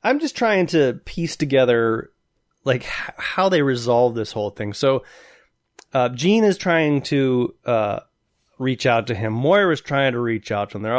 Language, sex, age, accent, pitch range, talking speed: English, male, 30-49, American, 125-195 Hz, 185 wpm